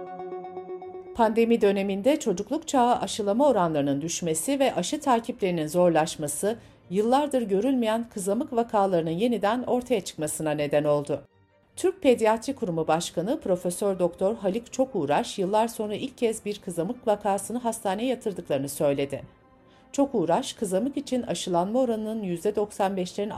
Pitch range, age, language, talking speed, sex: 170-245 Hz, 60-79, Turkish, 115 wpm, female